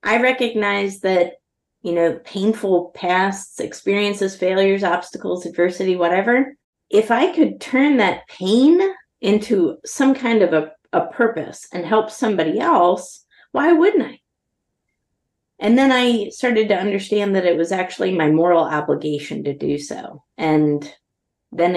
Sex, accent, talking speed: female, American, 140 wpm